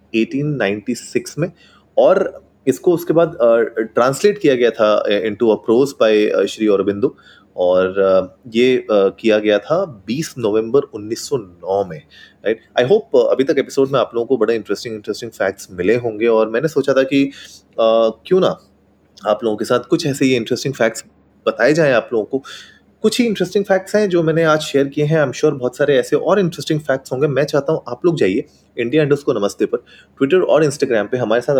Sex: male